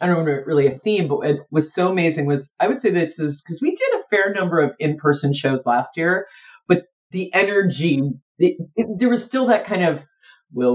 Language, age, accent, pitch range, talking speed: English, 30-49, American, 145-200 Hz, 225 wpm